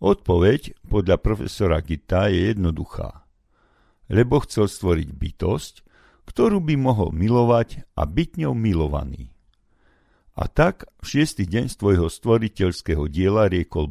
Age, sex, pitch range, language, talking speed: 50-69, male, 85-110 Hz, Slovak, 115 wpm